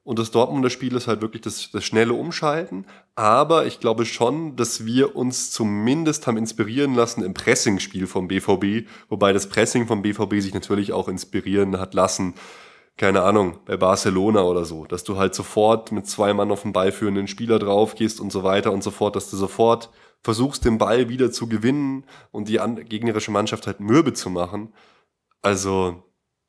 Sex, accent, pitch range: male, German, 100-120 Hz